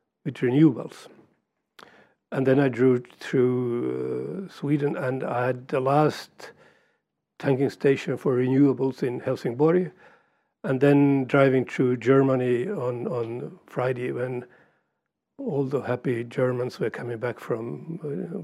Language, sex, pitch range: English, male, 125-180 Hz